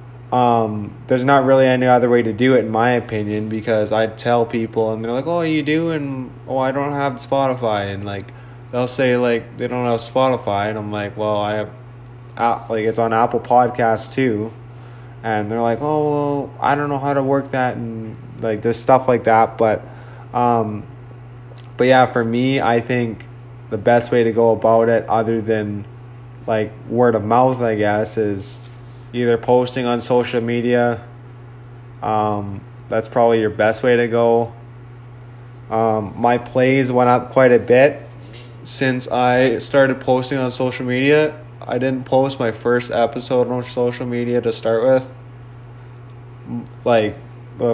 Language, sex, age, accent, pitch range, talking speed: English, male, 20-39, American, 115-125 Hz, 170 wpm